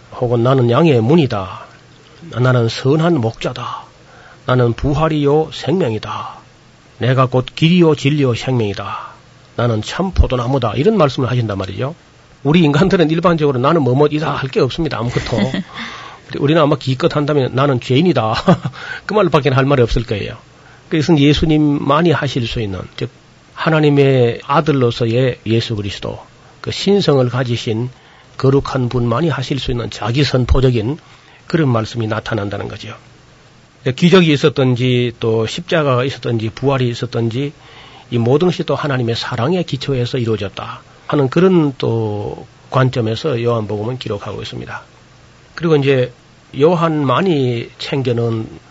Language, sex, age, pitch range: Korean, male, 40-59, 120-150 Hz